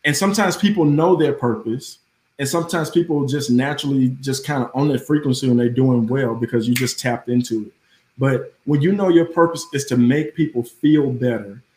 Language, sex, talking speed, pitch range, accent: English, male, 200 wpm, 125-160 Hz, American